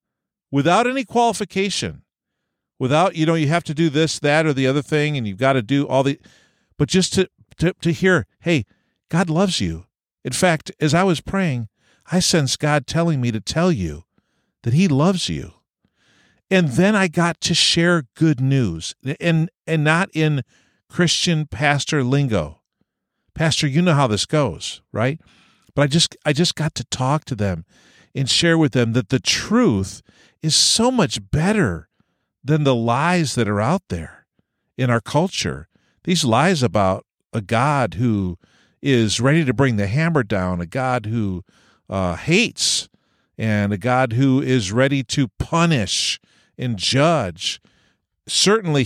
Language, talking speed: English, 165 wpm